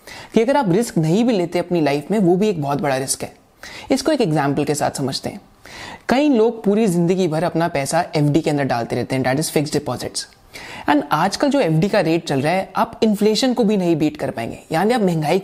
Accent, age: native, 30-49